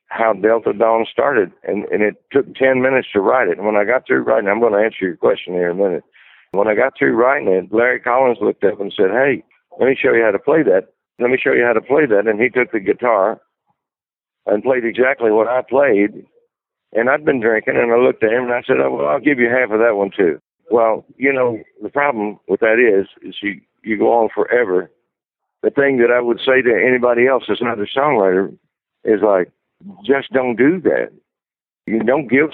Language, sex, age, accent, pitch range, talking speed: English, male, 60-79, American, 105-130 Hz, 230 wpm